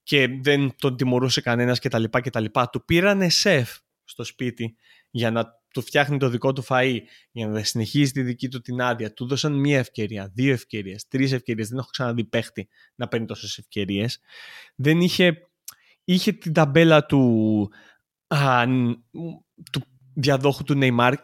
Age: 20-39